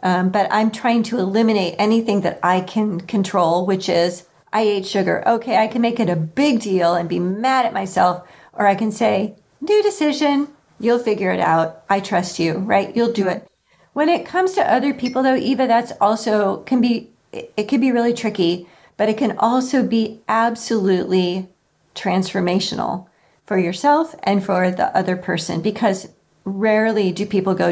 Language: English